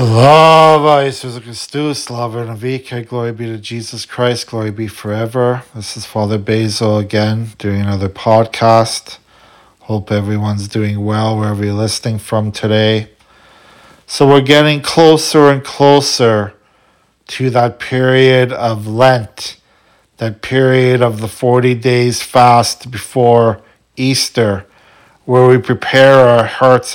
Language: English